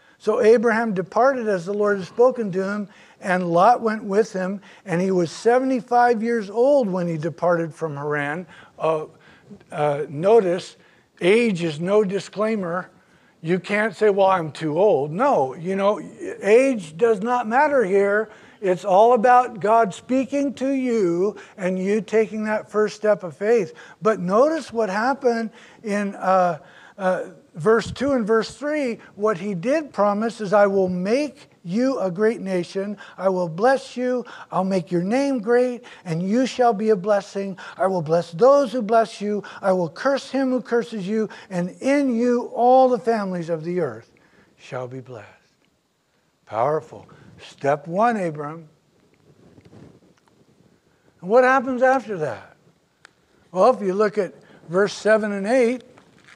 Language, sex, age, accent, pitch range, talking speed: English, male, 50-69, American, 180-240 Hz, 155 wpm